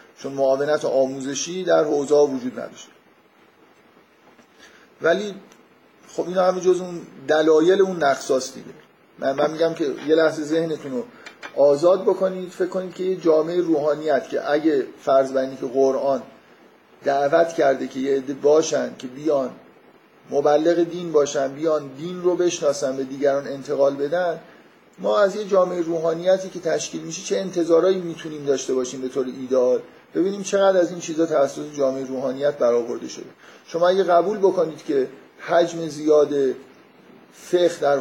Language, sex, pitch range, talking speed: Persian, male, 135-175 Hz, 140 wpm